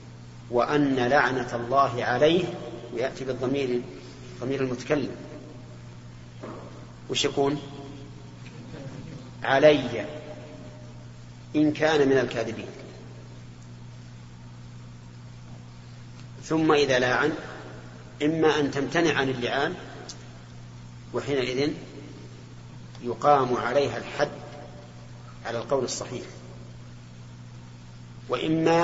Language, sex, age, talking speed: Arabic, male, 40-59, 65 wpm